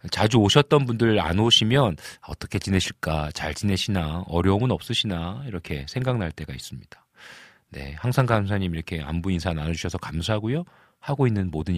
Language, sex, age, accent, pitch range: Korean, male, 40-59, native, 90-125 Hz